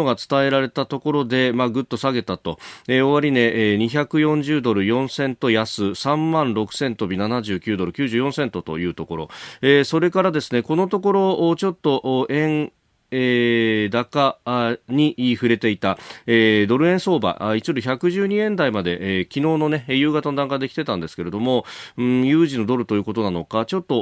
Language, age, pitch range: Japanese, 40-59, 105-145 Hz